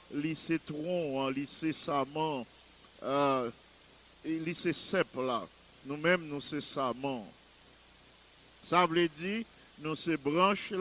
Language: English